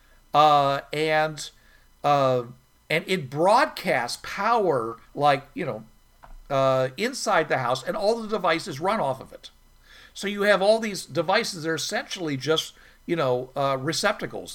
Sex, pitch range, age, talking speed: male, 135-190 Hz, 50-69, 145 wpm